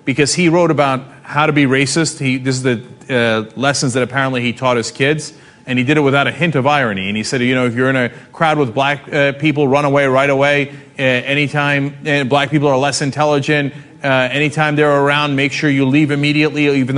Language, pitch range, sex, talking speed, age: English, 135-185 Hz, male, 230 wpm, 30-49